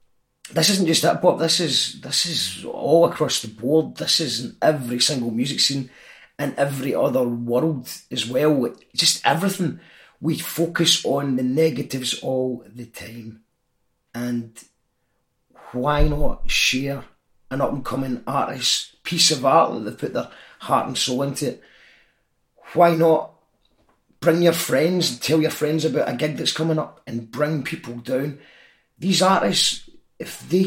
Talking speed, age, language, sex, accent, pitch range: 155 wpm, 30-49, English, male, British, 130-165 Hz